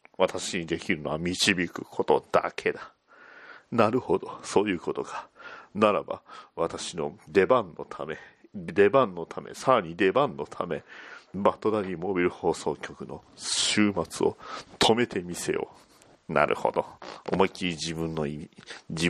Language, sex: Japanese, male